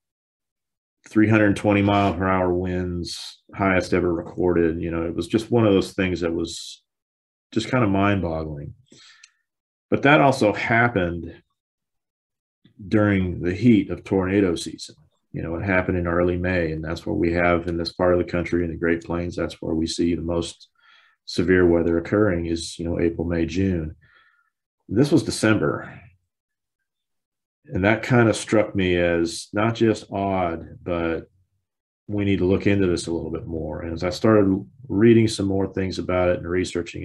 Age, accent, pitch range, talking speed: 40-59, American, 85-105 Hz, 175 wpm